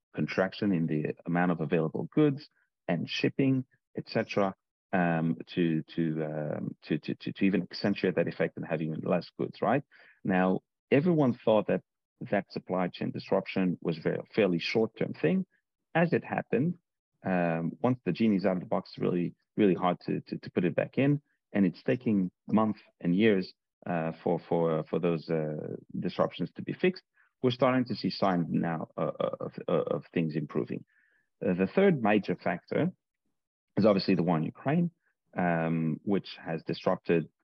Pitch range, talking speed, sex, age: 85-120 Hz, 170 wpm, male, 40-59